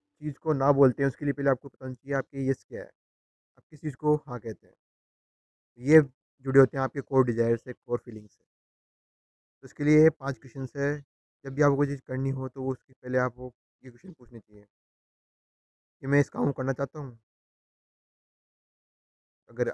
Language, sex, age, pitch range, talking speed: Hindi, male, 30-49, 115-135 Hz, 190 wpm